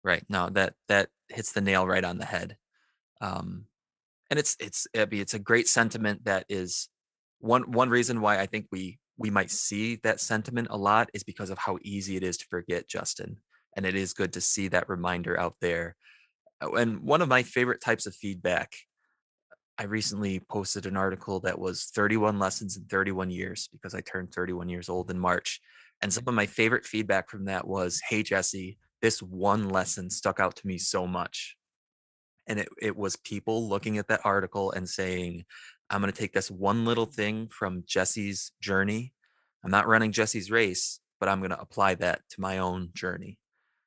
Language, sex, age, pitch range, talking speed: English, male, 20-39, 95-110 Hz, 195 wpm